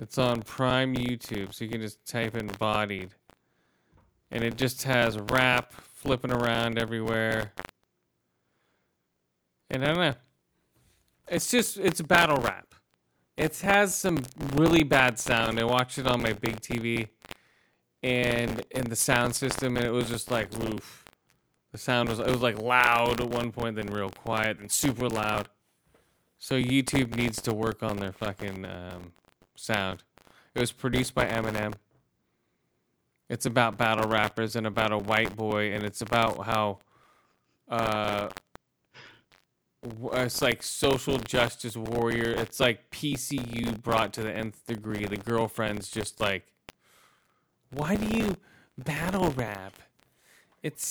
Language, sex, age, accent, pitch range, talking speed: English, male, 30-49, American, 105-125 Hz, 140 wpm